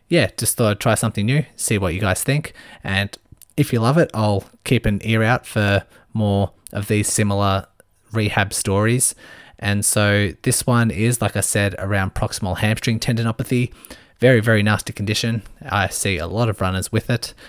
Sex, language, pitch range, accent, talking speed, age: male, English, 95-115 Hz, Australian, 180 wpm, 20-39